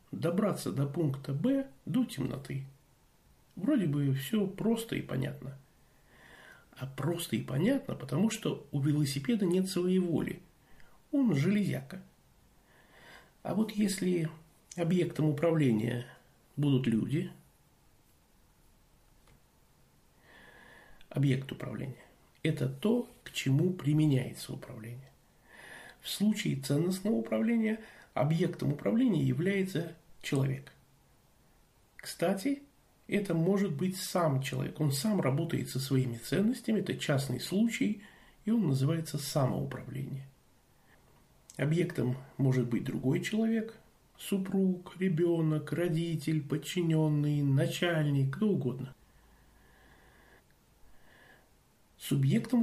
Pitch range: 135-190 Hz